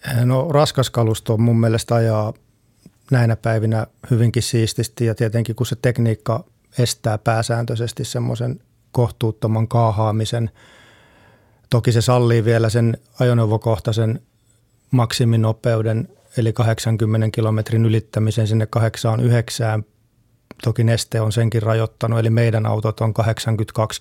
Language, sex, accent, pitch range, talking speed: Finnish, male, native, 110-120 Hz, 105 wpm